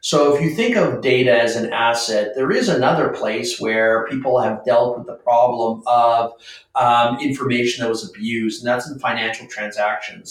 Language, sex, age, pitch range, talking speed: English, male, 40-59, 115-140 Hz, 180 wpm